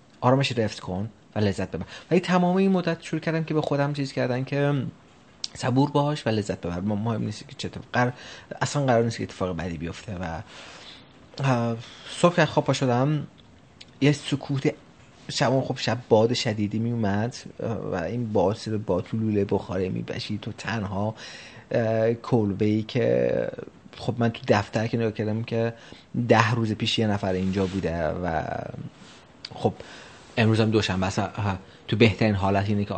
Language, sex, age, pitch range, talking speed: Persian, male, 30-49, 95-130 Hz, 155 wpm